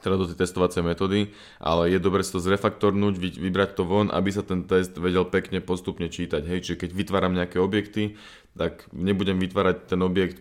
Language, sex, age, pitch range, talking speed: Slovak, male, 20-39, 90-105 Hz, 190 wpm